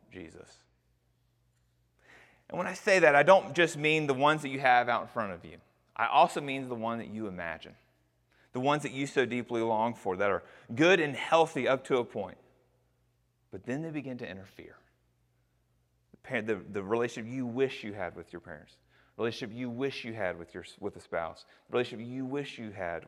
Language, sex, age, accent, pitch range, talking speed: English, male, 30-49, American, 105-150 Hz, 210 wpm